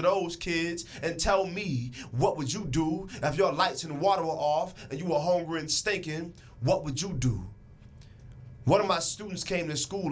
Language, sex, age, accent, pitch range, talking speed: English, male, 30-49, American, 145-195 Hz, 195 wpm